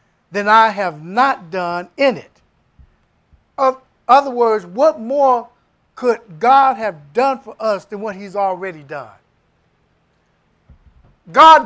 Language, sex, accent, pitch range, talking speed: English, male, American, 205-275 Hz, 125 wpm